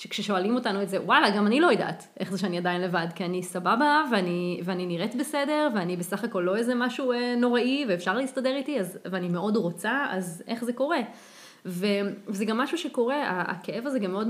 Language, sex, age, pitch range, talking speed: Hebrew, female, 20-39, 185-230 Hz, 195 wpm